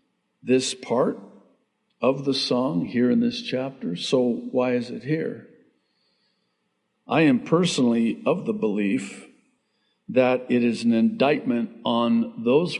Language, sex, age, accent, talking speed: English, male, 60-79, American, 125 wpm